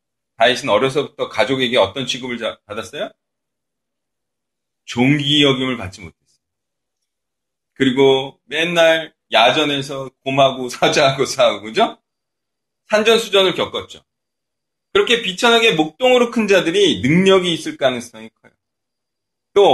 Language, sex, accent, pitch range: Korean, male, native, 135-195 Hz